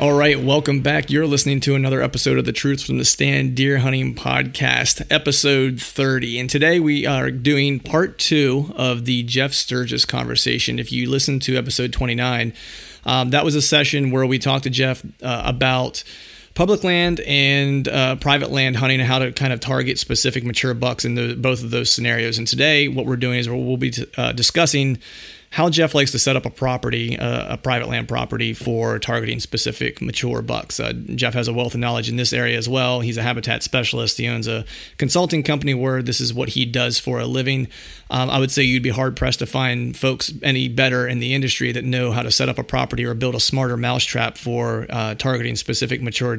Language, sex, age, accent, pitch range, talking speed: English, male, 30-49, American, 120-135 Hz, 210 wpm